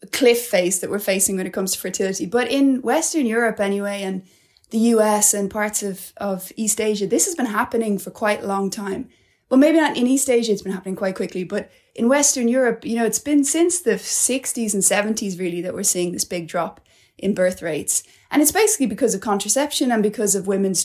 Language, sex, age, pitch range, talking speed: English, female, 20-39, 195-245 Hz, 220 wpm